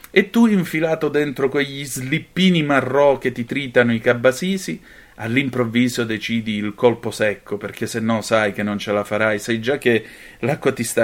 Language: Italian